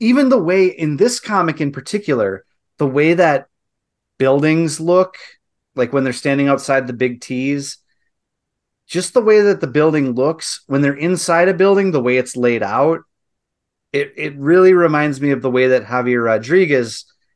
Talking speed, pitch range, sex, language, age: 170 wpm, 115-140 Hz, male, English, 30-49